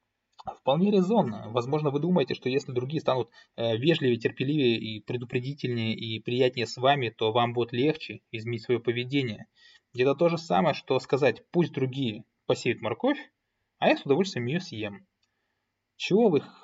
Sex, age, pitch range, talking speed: male, 20-39, 115-150 Hz, 155 wpm